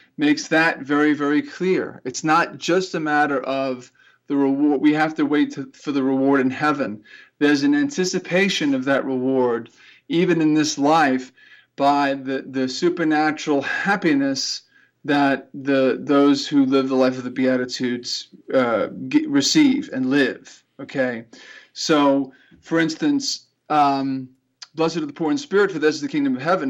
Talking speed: 160 wpm